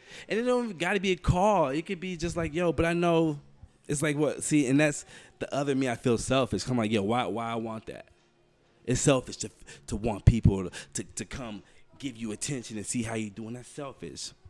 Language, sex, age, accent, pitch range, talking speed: English, male, 20-39, American, 100-150 Hz, 230 wpm